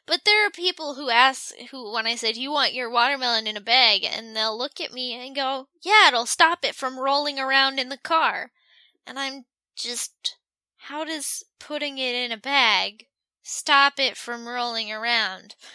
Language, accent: English, American